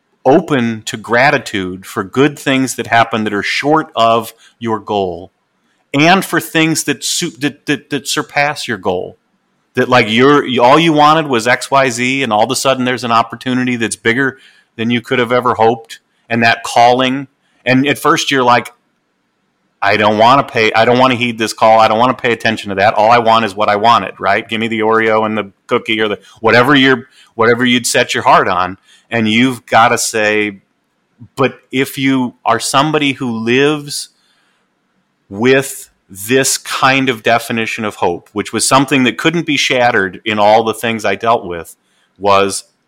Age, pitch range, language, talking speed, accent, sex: 30-49, 110-135 Hz, English, 195 wpm, American, male